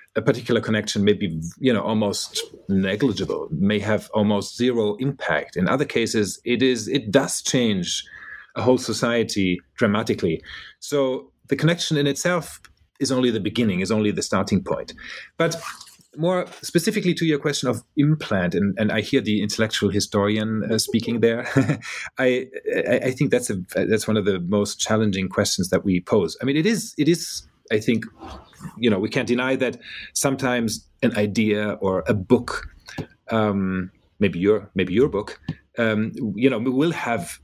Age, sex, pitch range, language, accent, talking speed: 30-49, male, 105-135 Hz, English, German, 165 wpm